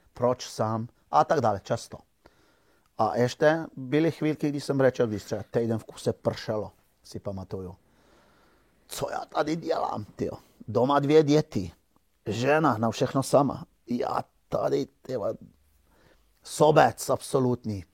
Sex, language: male, Czech